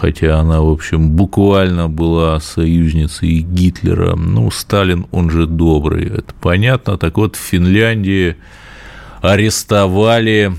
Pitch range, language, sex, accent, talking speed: 80-100 Hz, Russian, male, native, 115 wpm